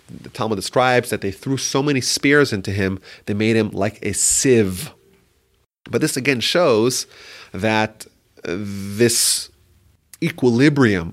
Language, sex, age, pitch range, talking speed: English, male, 30-49, 105-135 Hz, 130 wpm